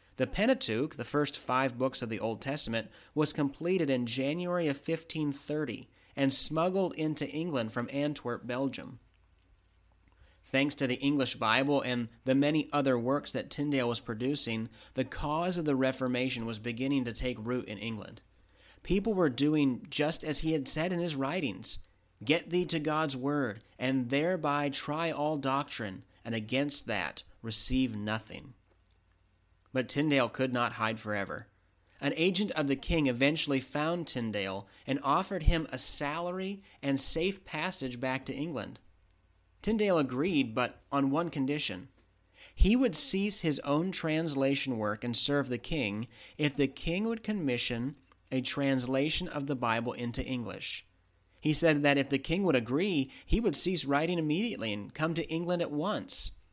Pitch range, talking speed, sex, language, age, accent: 115-150 Hz, 155 wpm, male, English, 30-49, American